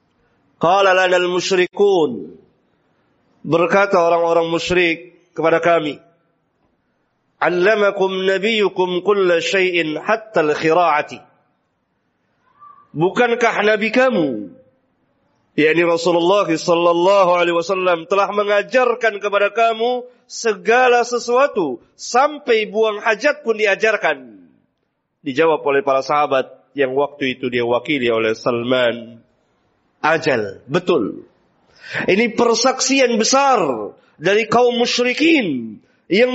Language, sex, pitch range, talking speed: Indonesian, male, 185-280 Hz, 75 wpm